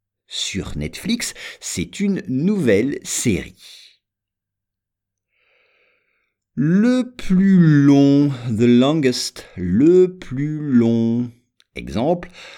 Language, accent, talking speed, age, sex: English, French, 70 wpm, 50-69, male